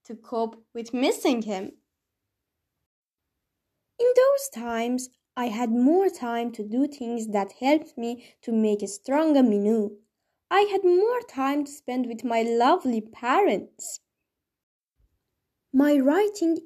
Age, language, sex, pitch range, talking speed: 10-29, Persian, female, 225-310 Hz, 125 wpm